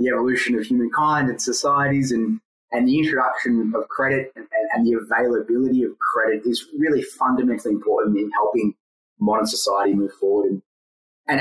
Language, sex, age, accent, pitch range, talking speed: English, male, 20-39, Australian, 115-150 Hz, 160 wpm